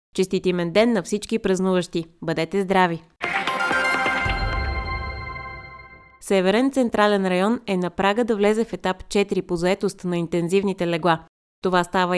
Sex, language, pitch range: female, Bulgarian, 170-210 Hz